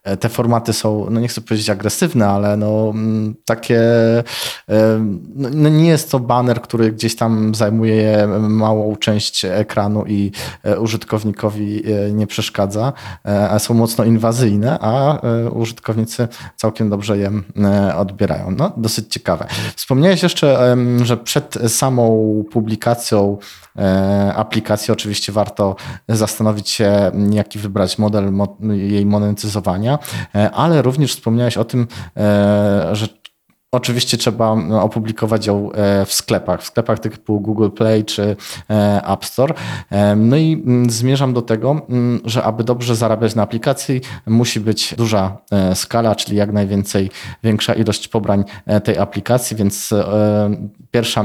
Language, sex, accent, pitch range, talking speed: Polish, male, native, 100-115 Hz, 115 wpm